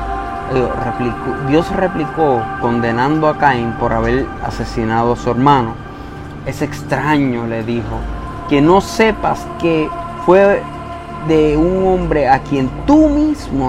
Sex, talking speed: male, 125 wpm